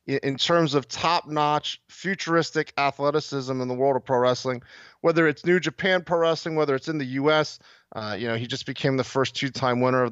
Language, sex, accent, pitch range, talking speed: English, male, American, 130-170 Hz, 200 wpm